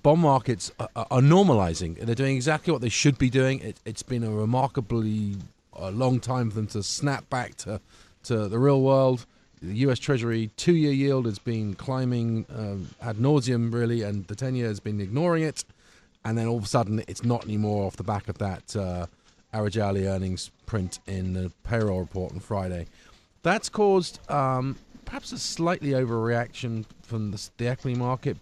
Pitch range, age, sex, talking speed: 105-130 Hz, 40-59, male, 175 wpm